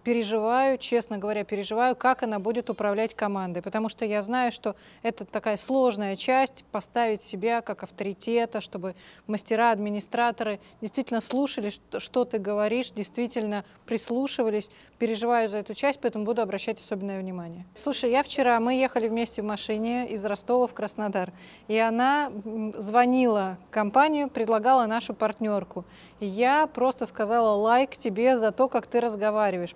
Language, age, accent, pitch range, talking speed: Russian, 20-39, native, 210-255 Hz, 140 wpm